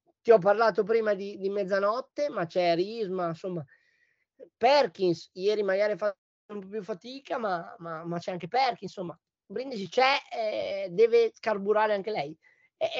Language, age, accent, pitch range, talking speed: Italian, 20-39, native, 185-245 Hz, 155 wpm